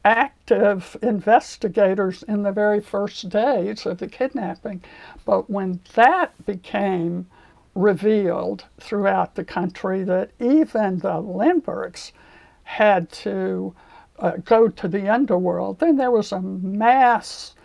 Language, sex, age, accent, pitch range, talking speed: English, male, 60-79, American, 190-225 Hz, 115 wpm